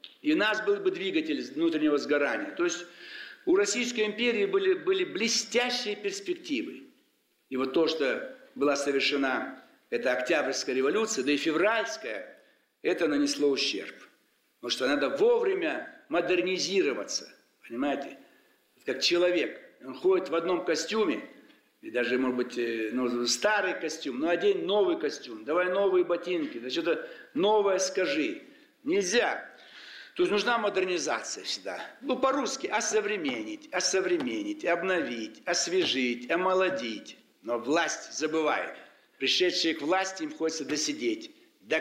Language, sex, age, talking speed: Russian, male, 60-79, 125 wpm